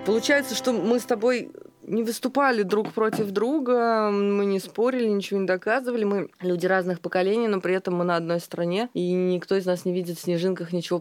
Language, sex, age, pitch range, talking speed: Russian, female, 20-39, 155-195 Hz, 195 wpm